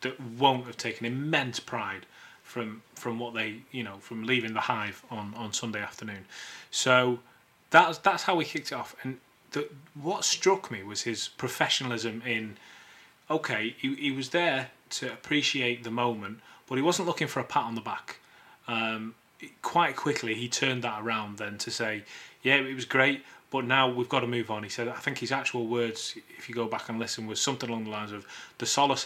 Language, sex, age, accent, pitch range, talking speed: English, male, 20-39, British, 115-130 Hz, 200 wpm